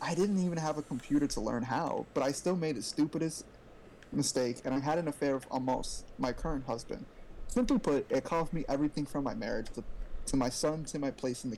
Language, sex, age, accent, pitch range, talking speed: English, male, 20-39, American, 135-170 Hz, 230 wpm